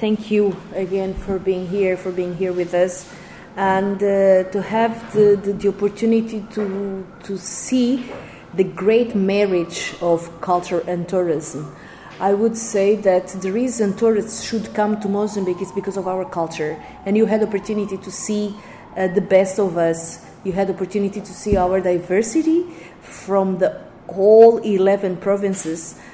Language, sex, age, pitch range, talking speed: English, female, 30-49, 170-205 Hz, 155 wpm